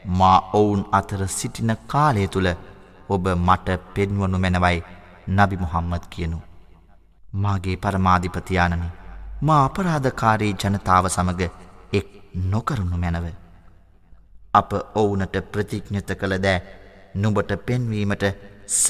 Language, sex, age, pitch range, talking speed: Arabic, male, 30-49, 90-105 Hz, 90 wpm